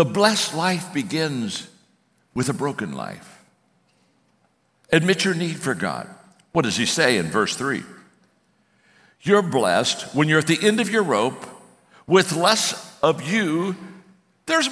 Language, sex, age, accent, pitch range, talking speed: English, male, 60-79, American, 170-250 Hz, 145 wpm